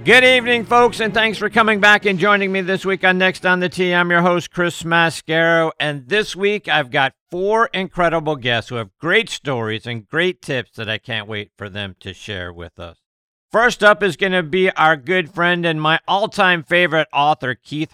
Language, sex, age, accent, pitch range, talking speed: English, male, 50-69, American, 120-165 Hz, 210 wpm